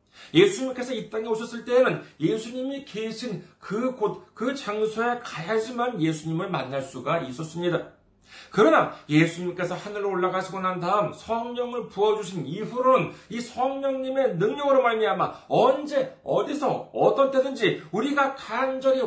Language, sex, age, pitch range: Korean, male, 40-59, 145-240 Hz